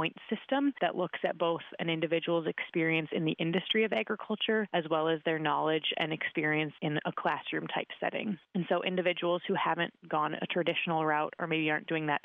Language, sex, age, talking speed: English, female, 20-39, 190 wpm